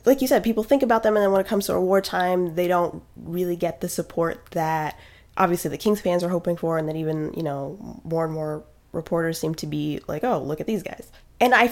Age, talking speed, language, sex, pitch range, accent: 20-39, 250 wpm, English, female, 165-200 Hz, American